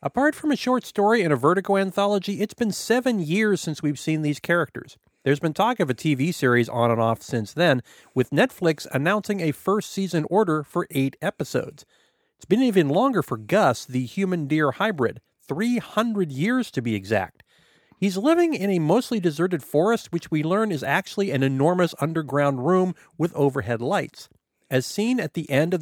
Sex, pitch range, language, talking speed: male, 130-195 Hz, English, 185 wpm